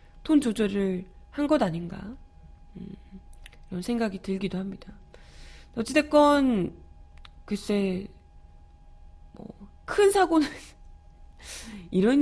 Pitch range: 190-270 Hz